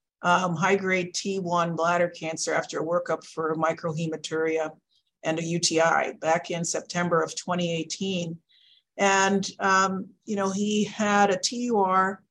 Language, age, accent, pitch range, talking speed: English, 50-69, American, 170-200 Hz, 130 wpm